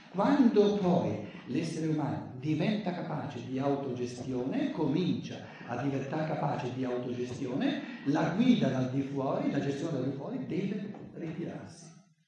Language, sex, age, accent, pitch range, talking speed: Italian, male, 60-79, native, 140-210 Hz, 125 wpm